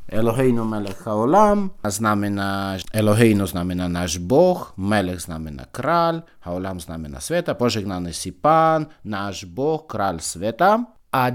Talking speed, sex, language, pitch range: 120 wpm, male, Slovak, 100-135 Hz